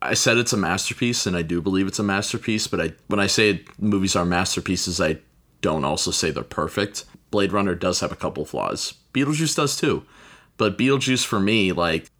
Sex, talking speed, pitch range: male, 200 wpm, 90-110 Hz